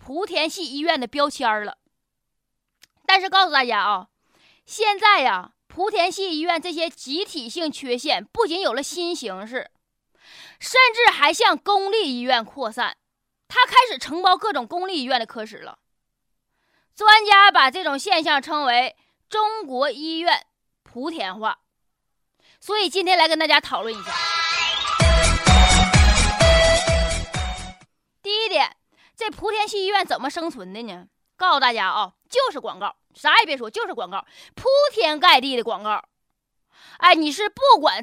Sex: female